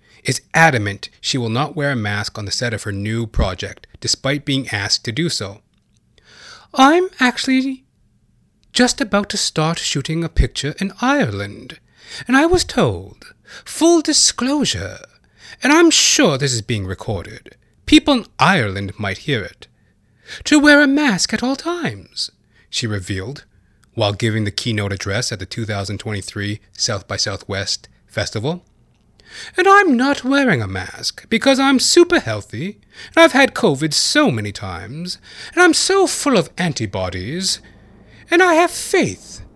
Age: 30-49